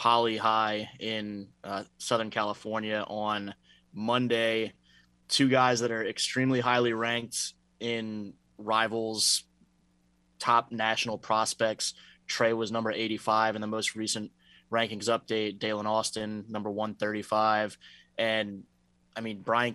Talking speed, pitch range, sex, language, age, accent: 115 wpm, 105-115 Hz, male, English, 20-39, American